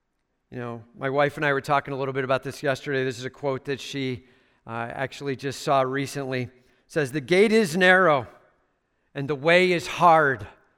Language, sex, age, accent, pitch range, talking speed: English, male, 50-69, American, 155-240 Hz, 200 wpm